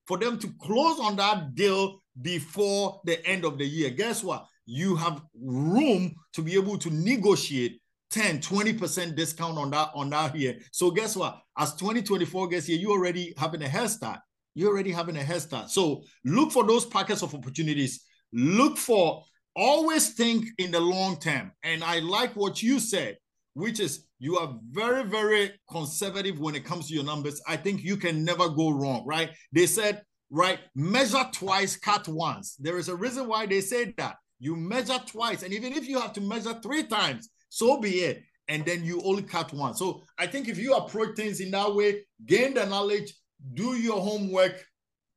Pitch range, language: 165-215 Hz, English